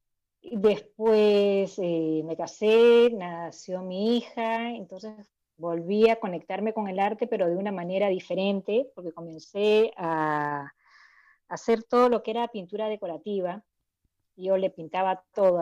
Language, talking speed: Spanish, 125 wpm